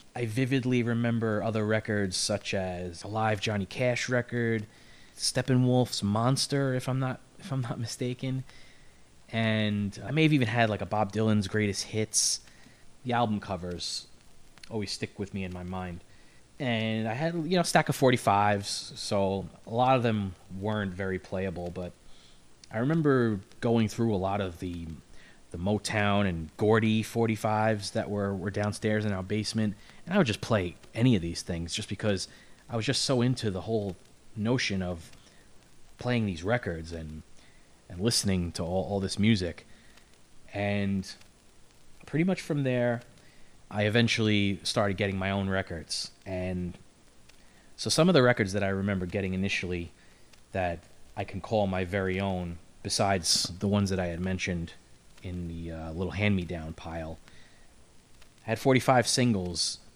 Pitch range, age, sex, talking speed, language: 95-115 Hz, 20-39, male, 155 wpm, English